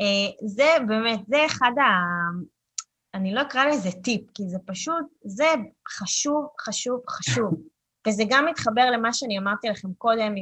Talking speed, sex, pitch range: 145 wpm, female, 190-235 Hz